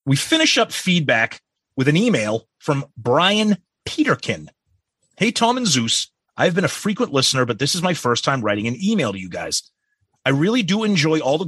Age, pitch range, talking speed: 30-49, 120-165 Hz, 195 wpm